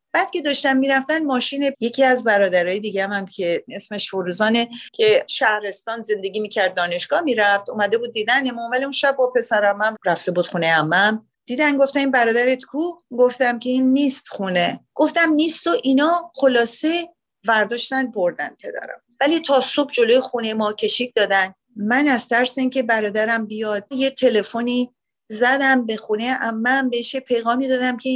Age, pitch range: 40-59, 220-275 Hz